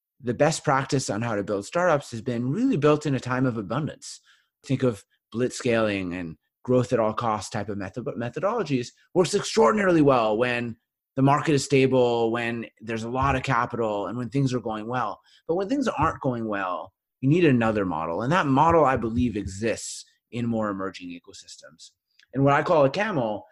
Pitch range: 105-135 Hz